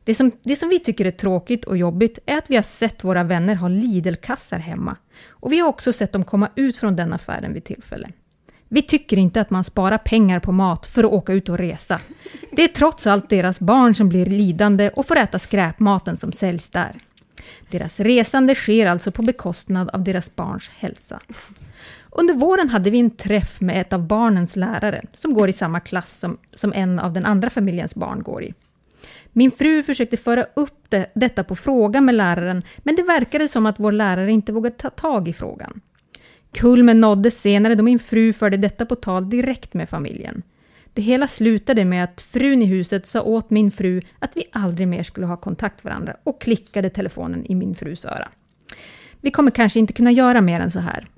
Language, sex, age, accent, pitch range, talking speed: English, female, 30-49, Swedish, 190-245 Hz, 205 wpm